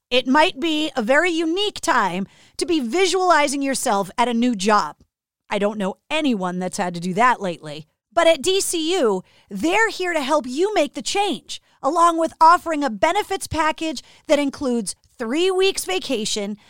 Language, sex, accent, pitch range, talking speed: English, female, American, 240-345 Hz, 170 wpm